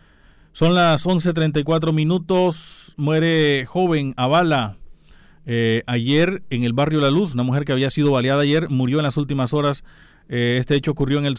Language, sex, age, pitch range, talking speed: Spanish, male, 40-59, 135-160 Hz, 170 wpm